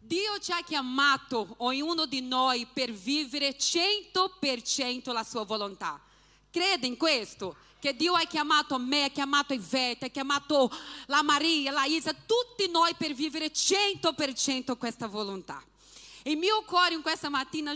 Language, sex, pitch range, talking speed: Italian, female, 260-325 Hz, 145 wpm